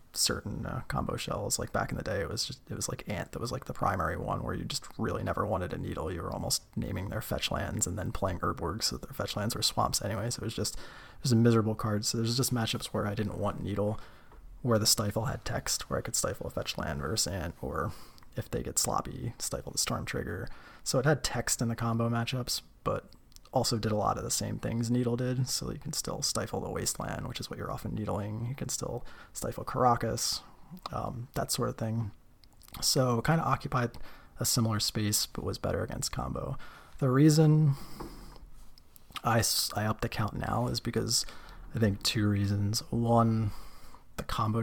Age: 20-39